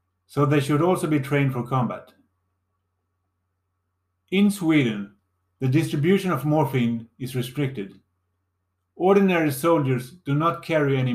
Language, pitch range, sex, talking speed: English, 95-145 Hz, male, 120 wpm